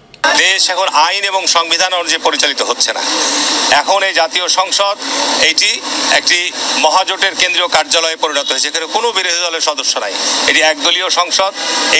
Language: Bengali